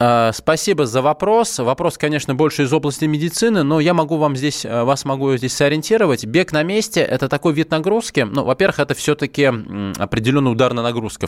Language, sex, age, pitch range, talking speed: Russian, male, 20-39, 120-155 Hz, 175 wpm